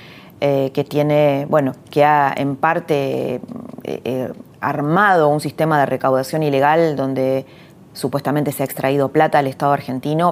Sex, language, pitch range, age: female, Spanish, 145-180 Hz, 20-39